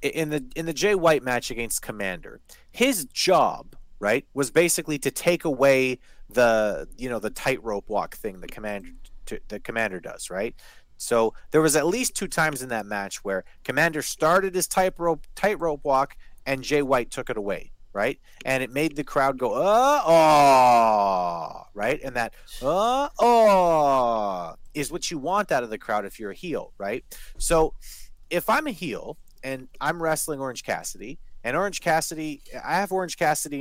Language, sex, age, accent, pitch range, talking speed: English, male, 30-49, American, 130-185 Hz, 180 wpm